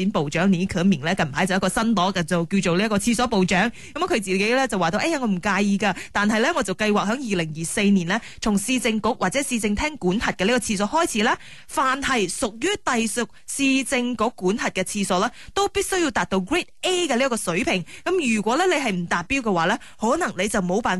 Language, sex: Chinese, female